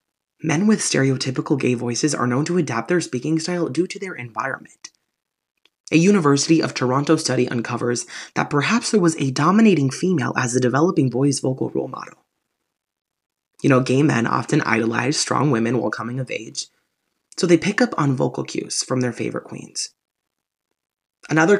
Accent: American